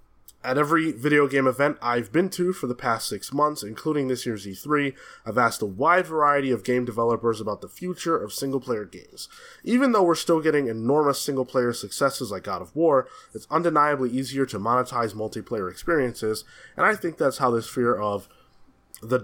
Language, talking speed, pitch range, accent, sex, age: English, 185 wpm, 115-150 Hz, American, male, 20-39